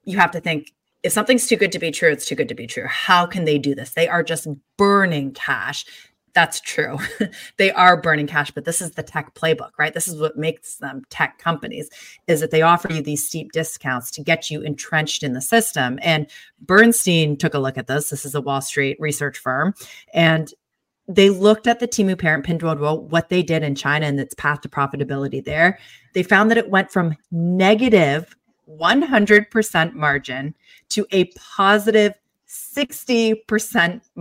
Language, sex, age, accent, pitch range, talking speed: English, female, 30-49, American, 150-190 Hz, 190 wpm